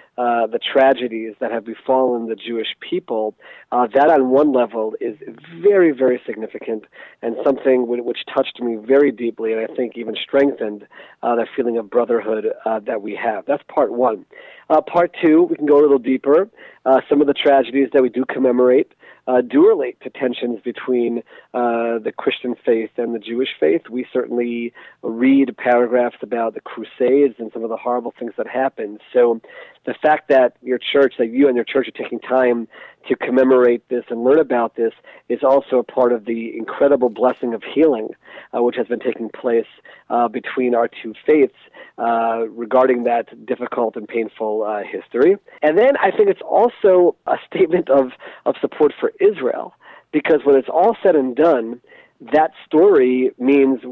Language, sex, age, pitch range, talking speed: English, male, 40-59, 120-140 Hz, 180 wpm